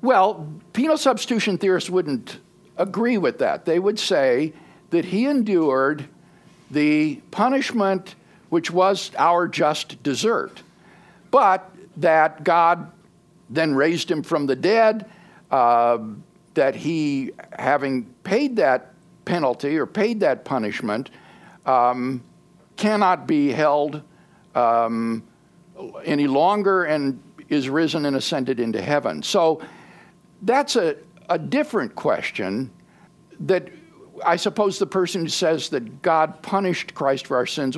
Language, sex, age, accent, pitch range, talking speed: English, male, 60-79, American, 145-205 Hz, 120 wpm